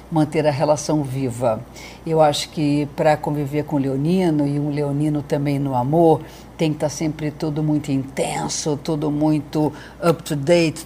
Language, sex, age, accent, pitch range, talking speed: Portuguese, female, 50-69, Brazilian, 150-175 Hz, 160 wpm